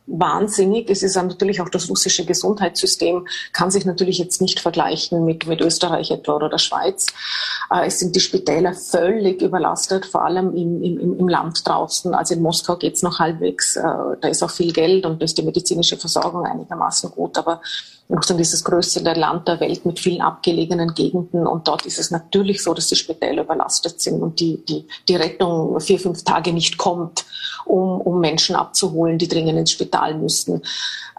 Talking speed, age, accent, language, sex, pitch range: 185 wpm, 30-49, Austrian, German, female, 170-195 Hz